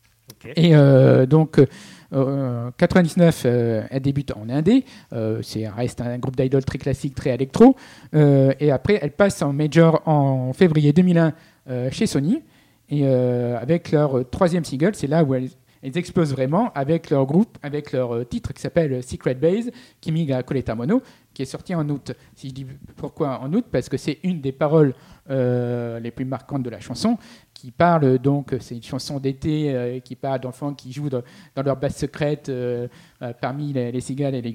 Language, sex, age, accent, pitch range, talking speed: French, male, 50-69, French, 125-160 Hz, 185 wpm